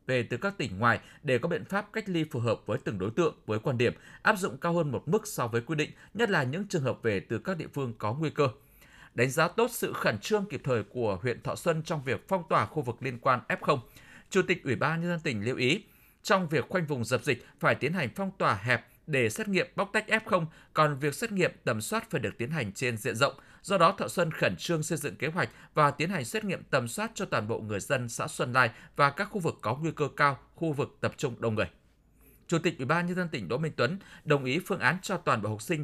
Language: Vietnamese